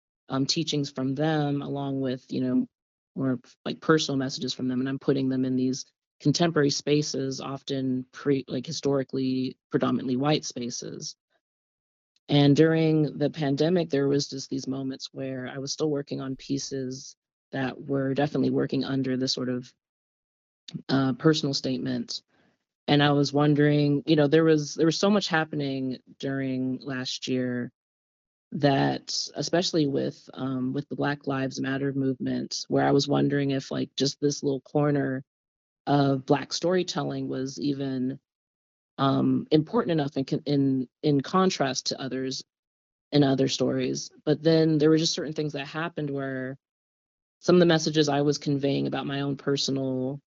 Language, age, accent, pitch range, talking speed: English, 30-49, American, 130-145 Hz, 155 wpm